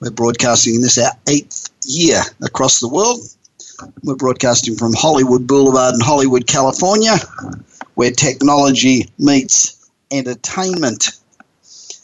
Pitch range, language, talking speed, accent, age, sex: 120-150 Hz, English, 110 wpm, Australian, 50-69, male